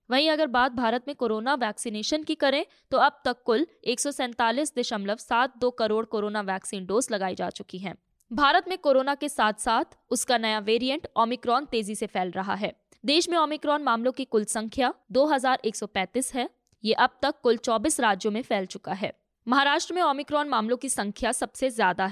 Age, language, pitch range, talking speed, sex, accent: 20-39, Hindi, 220-285 Hz, 180 wpm, female, native